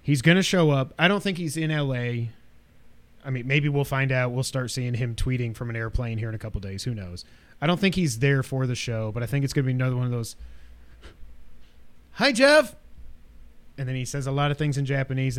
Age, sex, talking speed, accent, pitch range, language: 30-49, male, 245 wpm, American, 115-155 Hz, English